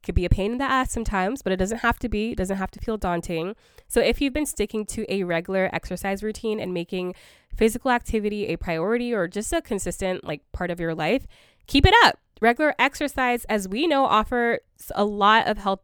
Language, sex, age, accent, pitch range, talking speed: English, female, 20-39, American, 185-230 Hz, 220 wpm